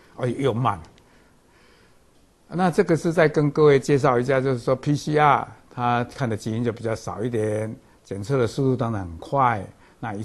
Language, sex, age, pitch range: Chinese, male, 60-79, 100-130 Hz